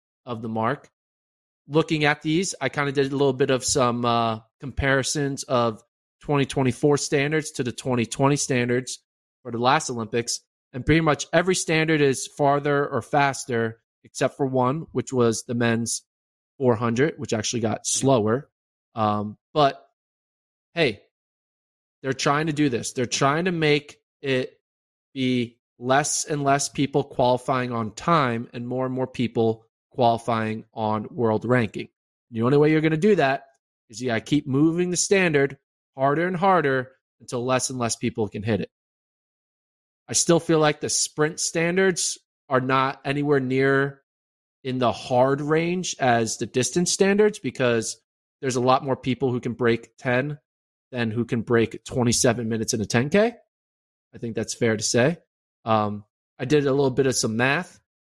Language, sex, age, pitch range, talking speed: English, male, 20-39, 115-145 Hz, 165 wpm